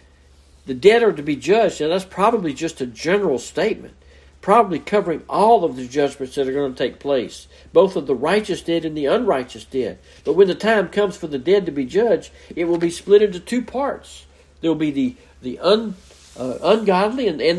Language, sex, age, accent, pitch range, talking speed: English, male, 60-79, American, 135-200 Hz, 210 wpm